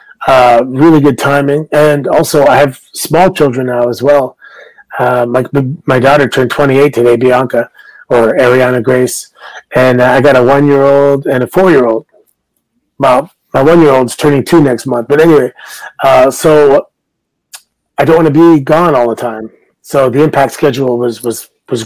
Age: 30-49